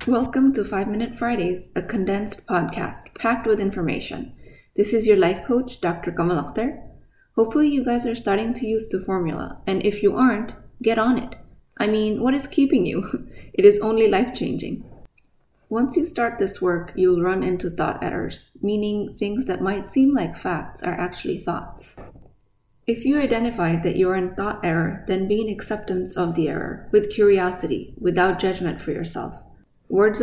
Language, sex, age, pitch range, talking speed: English, female, 20-39, 185-225 Hz, 175 wpm